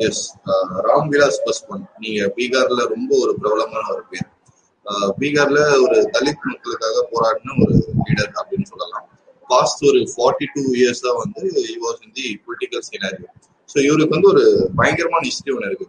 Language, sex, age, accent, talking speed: Tamil, male, 20-39, native, 55 wpm